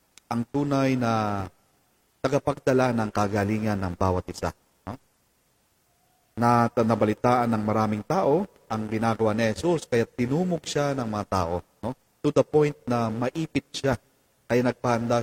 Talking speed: 135 wpm